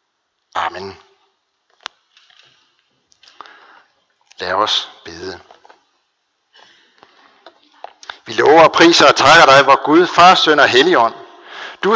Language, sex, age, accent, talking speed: Danish, male, 60-79, native, 90 wpm